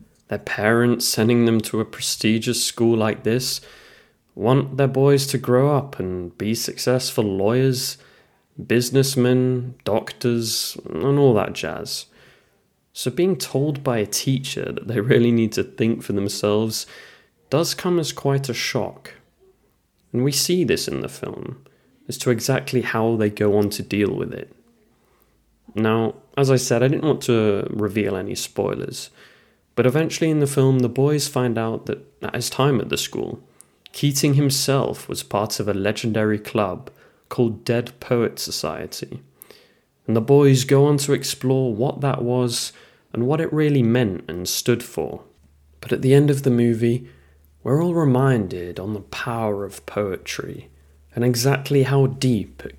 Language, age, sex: English, 20-39, male